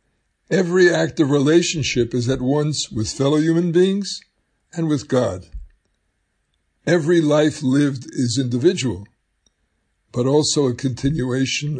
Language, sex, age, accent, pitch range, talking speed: English, male, 60-79, American, 115-150 Hz, 115 wpm